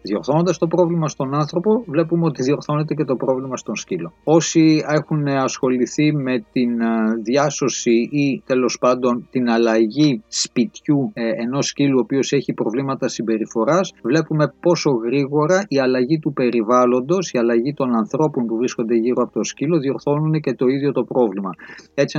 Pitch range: 120-150 Hz